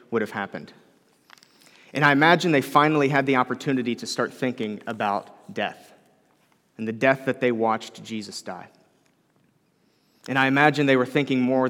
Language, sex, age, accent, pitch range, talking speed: English, male, 30-49, American, 115-140 Hz, 160 wpm